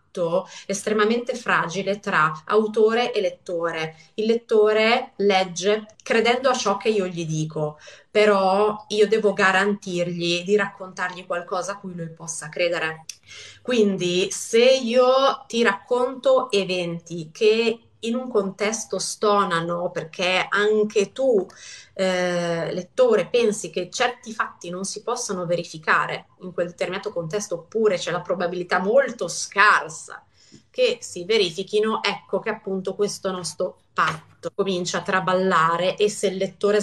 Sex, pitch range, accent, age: female, 180-215 Hz, native, 20-39